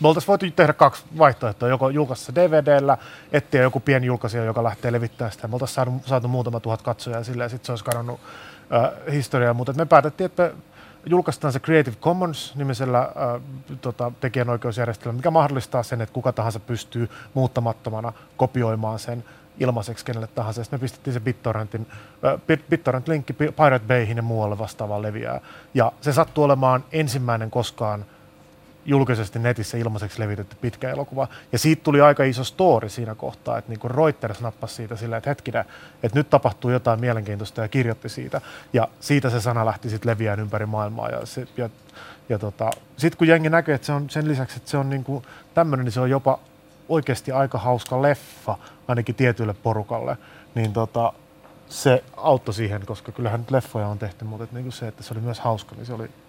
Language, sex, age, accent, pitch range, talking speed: Finnish, male, 30-49, native, 115-140 Hz, 175 wpm